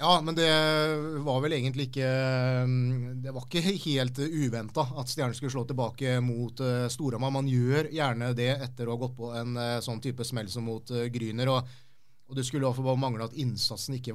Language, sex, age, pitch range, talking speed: English, male, 30-49, 115-135 Hz, 195 wpm